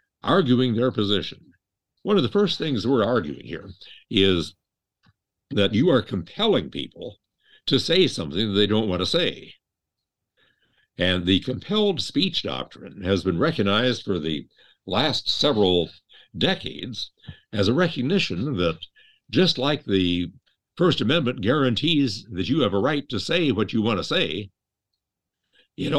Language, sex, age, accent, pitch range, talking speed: English, male, 60-79, American, 90-120 Hz, 140 wpm